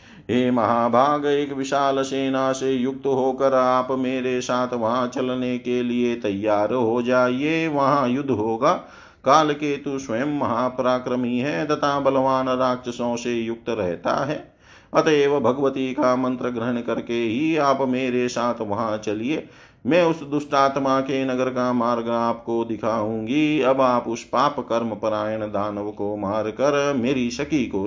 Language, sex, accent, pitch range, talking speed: Hindi, male, native, 115-140 Hz, 145 wpm